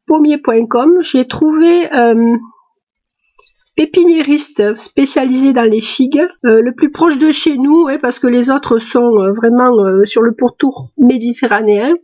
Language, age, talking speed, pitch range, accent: French, 50-69, 145 wpm, 230-300 Hz, French